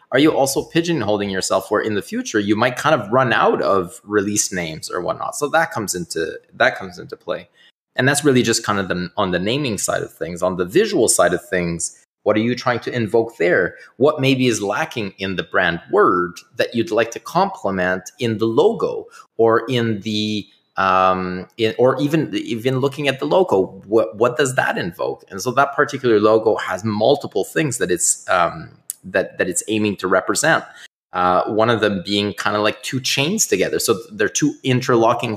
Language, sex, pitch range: English, male, 95-135 Hz